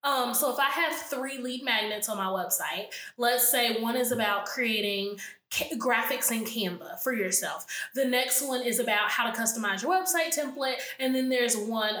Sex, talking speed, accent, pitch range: female, 185 wpm, American, 215-275 Hz